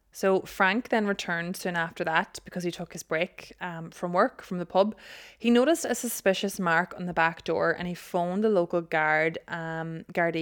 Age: 20-39